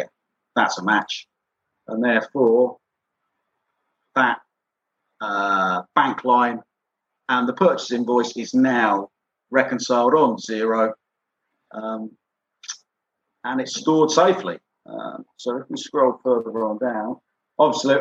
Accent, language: British, English